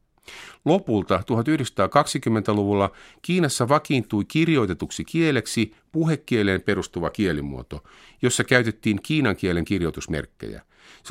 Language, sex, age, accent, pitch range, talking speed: Finnish, male, 50-69, native, 100-145 Hz, 80 wpm